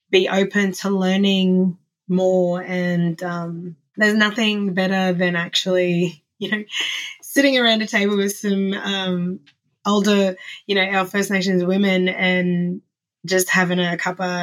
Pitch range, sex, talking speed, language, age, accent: 180-200 Hz, female, 135 wpm, English, 20-39, Australian